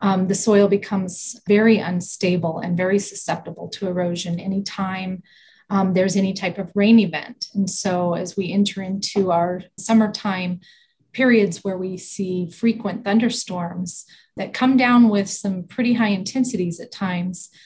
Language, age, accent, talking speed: English, 30-49, American, 145 wpm